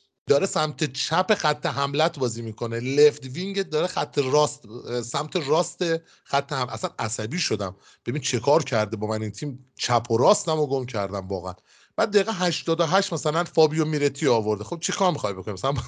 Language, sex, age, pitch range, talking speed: Persian, male, 30-49, 130-180 Hz, 180 wpm